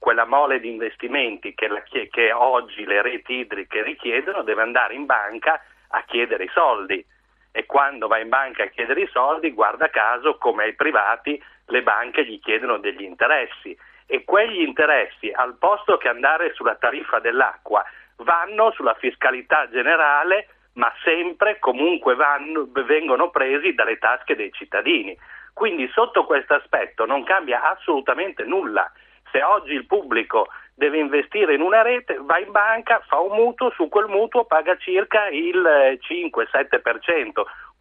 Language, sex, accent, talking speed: Italian, male, native, 150 wpm